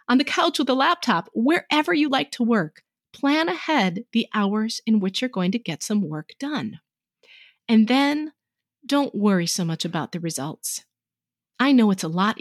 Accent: American